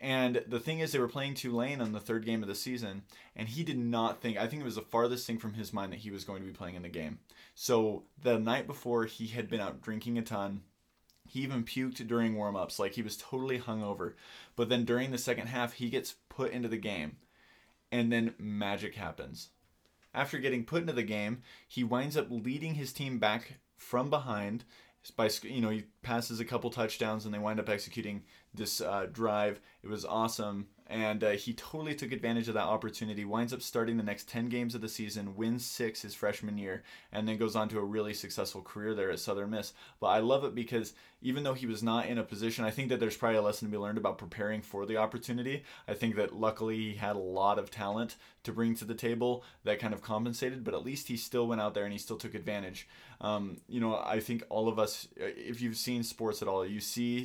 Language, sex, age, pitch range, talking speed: English, male, 20-39, 105-120 Hz, 235 wpm